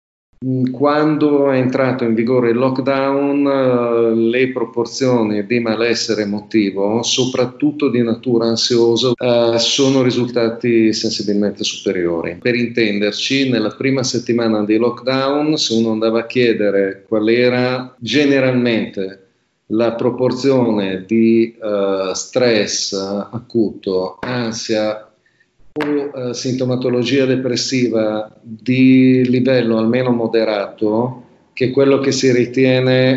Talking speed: 100 wpm